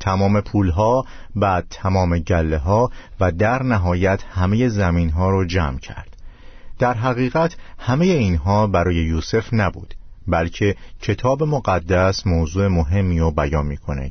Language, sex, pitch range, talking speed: Persian, male, 85-115 Hz, 130 wpm